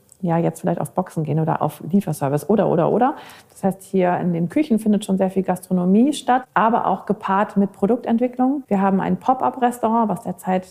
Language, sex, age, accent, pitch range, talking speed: German, female, 40-59, German, 175-220 Hz, 195 wpm